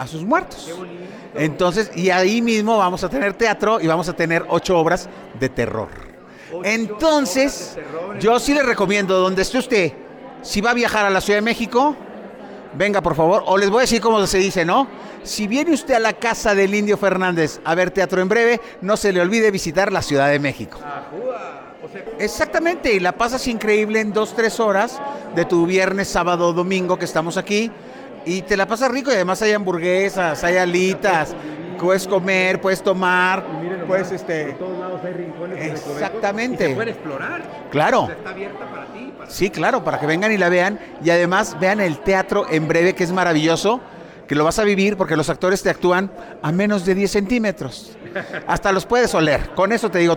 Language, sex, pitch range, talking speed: Spanish, male, 175-220 Hz, 185 wpm